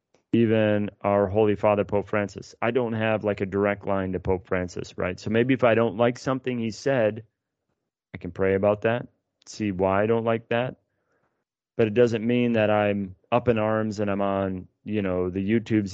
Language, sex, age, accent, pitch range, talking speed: English, male, 30-49, American, 95-115 Hz, 200 wpm